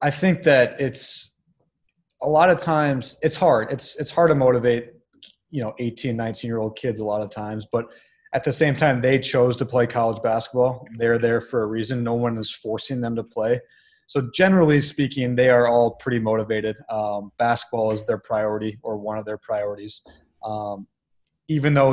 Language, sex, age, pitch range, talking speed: French, male, 20-39, 110-130 Hz, 190 wpm